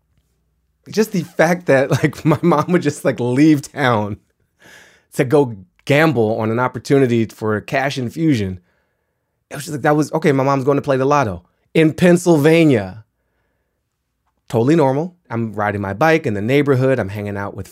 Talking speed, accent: 175 wpm, American